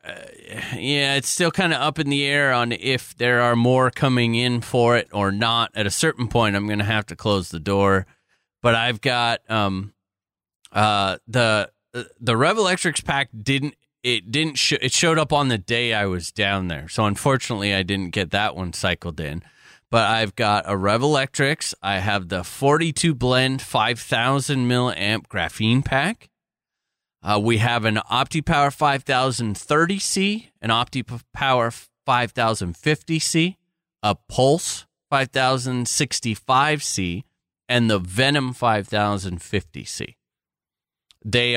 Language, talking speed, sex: English, 145 wpm, male